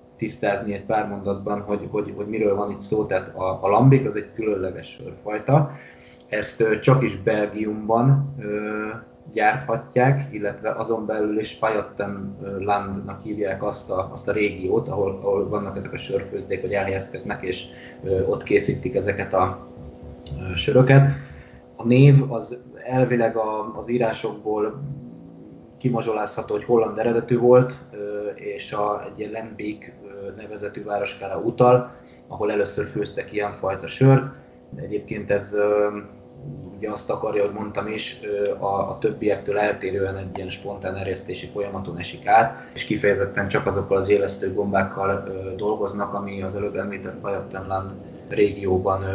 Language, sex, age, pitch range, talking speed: Hungarian, male, 20-39, 100-115 Hz, 135 wpm